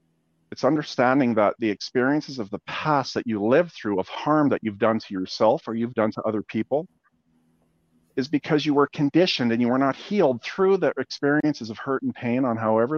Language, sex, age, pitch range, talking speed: English, male, 40-59, 105-135 Hz, 205 wpm